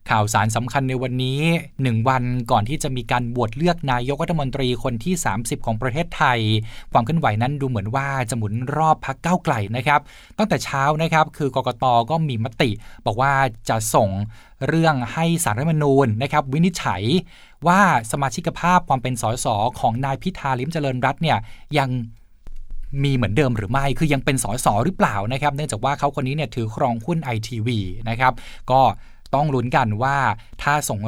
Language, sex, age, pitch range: Thai, male, 20-39, 115-150 Hz